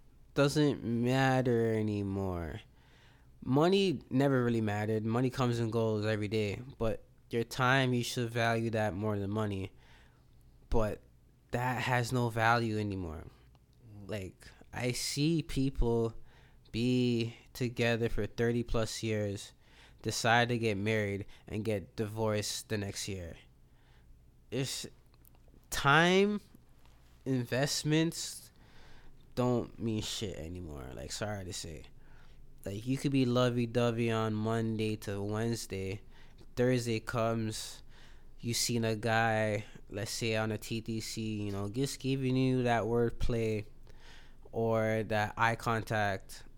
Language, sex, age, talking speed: English, male, 20-39, 115 wpm